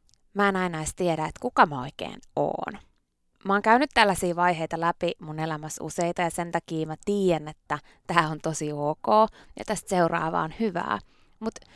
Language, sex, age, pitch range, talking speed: Finnish, female, 20-39, 165-220 Hz, 175 wpm